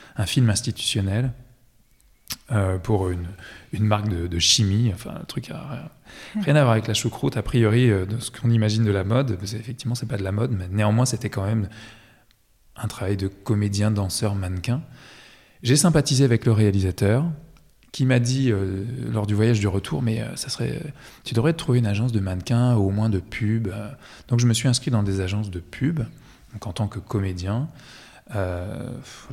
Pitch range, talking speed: 105-120 Hz, 200 wpm